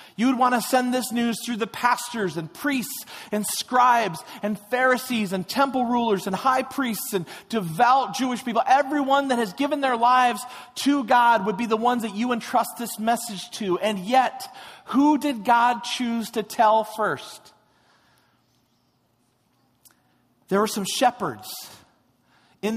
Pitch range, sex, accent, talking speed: 180-235 Hz, male, American, 155 wpm